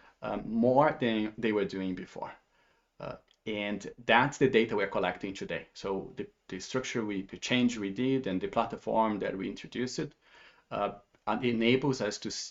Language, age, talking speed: English, 30-49, 170 wpm